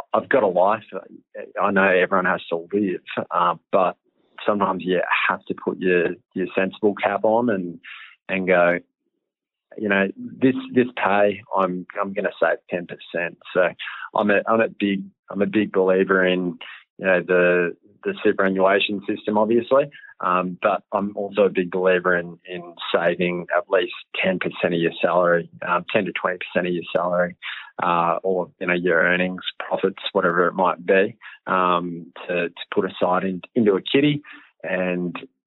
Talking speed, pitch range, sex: 165 wpm, 90-105 Hz, male